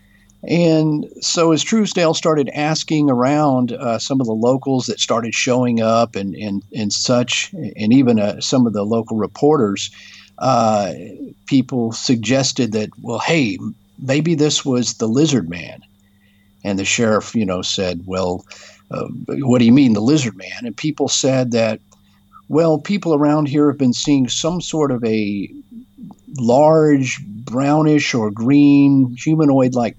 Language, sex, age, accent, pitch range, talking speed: English, male, 50-69, American, 105-145 Hz, 150 wpm